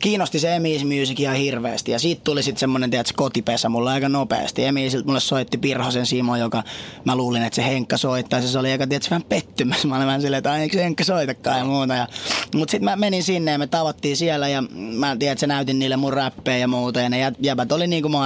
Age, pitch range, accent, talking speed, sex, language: 20-39, 125-145 Hz, native, 205 wpm, male, Finnish